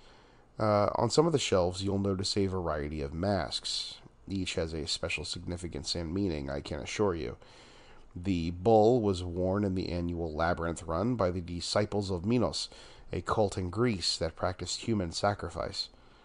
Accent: American